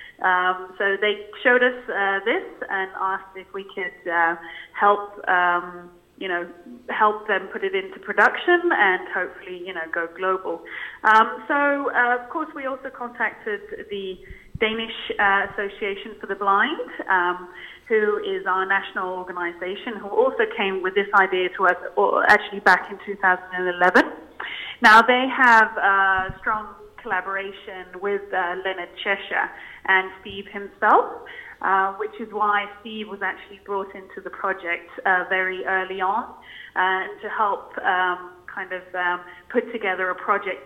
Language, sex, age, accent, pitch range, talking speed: English, female, 30-49, British, 185-230 Hz, 150 wpm